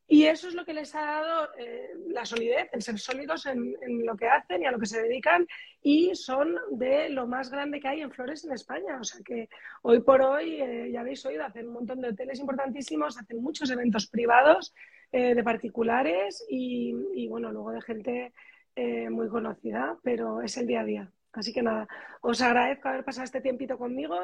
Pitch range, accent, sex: 230-280 Hz, Spanish, female